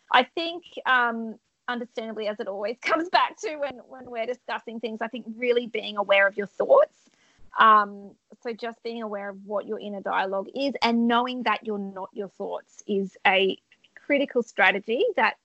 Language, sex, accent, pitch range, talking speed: English, female, Australian, 205-250 Hz, 180 wpm